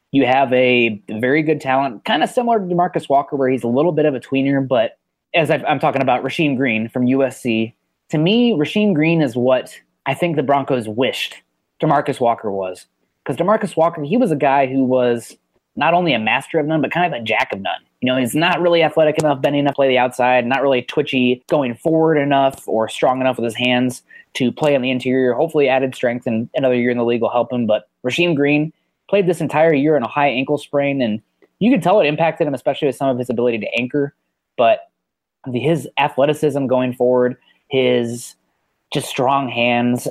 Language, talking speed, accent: English, 215 wpm, American